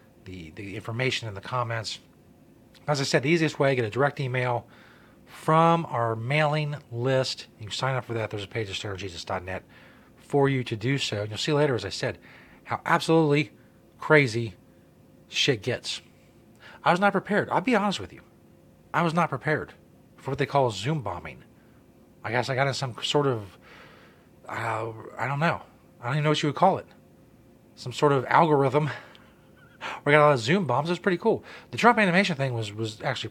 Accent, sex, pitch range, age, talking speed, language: American, male, 110-150 Hz, 30-49, 200 wpm, English